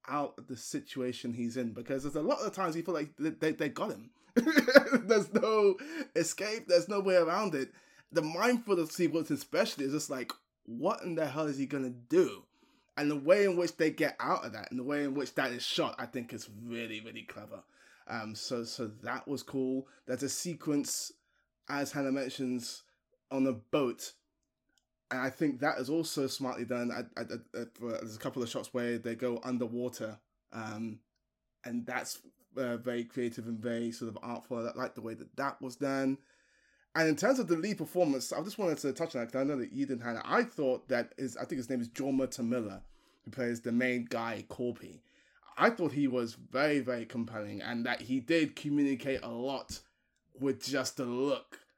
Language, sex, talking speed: English, male, 205 wpm